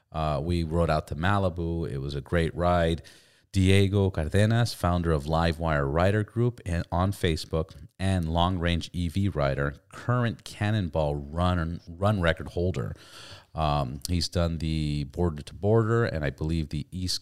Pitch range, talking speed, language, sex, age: 75-95 Hz, 145 wpm, English, male, 40-59